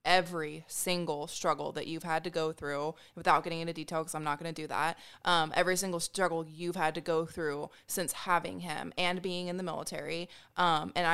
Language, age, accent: English, 20-39, American